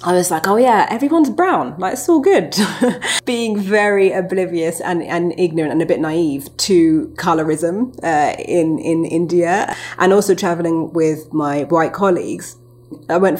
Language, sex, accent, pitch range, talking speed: English, female, British, 165-245 Hz, 160 wpm